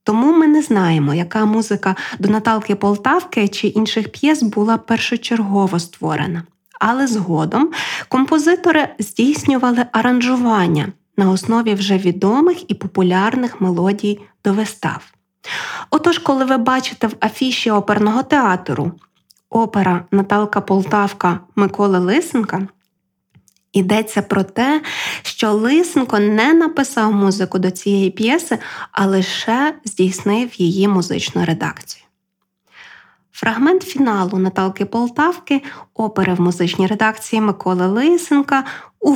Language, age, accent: Ukrainian, 20-39, native